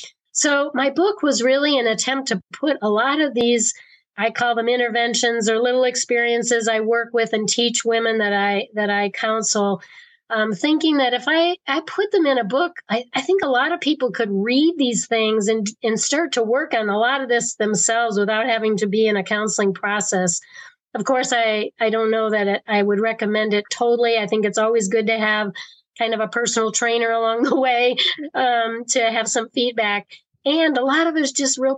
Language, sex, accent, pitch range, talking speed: English, female, American, 215-250 Hz, 215 wpm